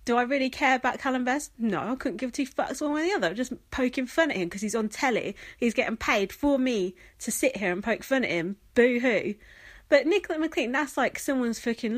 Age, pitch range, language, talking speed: 30-49, 185-260 Hz, English, 245 wpm